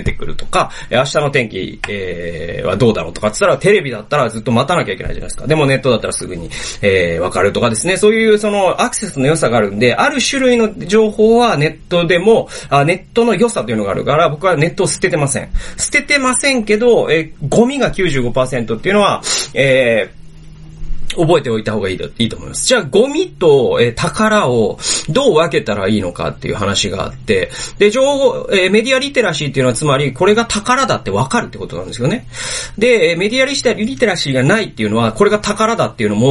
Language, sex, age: Japanese, male, 30-49